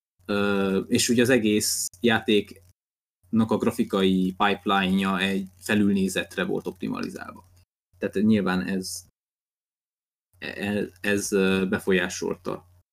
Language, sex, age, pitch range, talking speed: Hungarian, male, 20-39, 95-130 Hz, 80 wpm